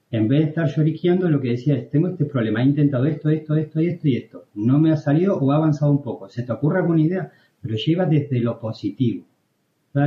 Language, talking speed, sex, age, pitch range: Spanish, 245 wpm, male, 40-59, 120-150 Hz